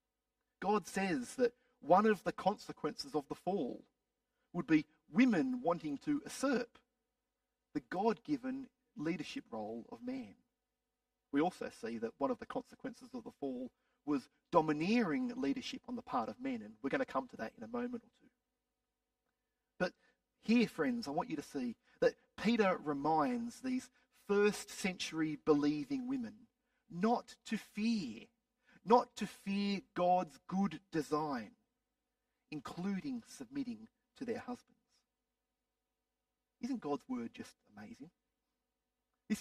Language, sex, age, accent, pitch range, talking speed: English, male, 40-59, Australian, 210-250 Hz, 135 wpm